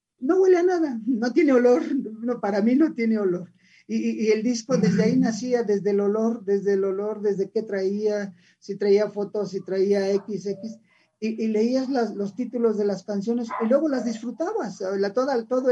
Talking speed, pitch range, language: 195 wpm, 200-240 Hz, English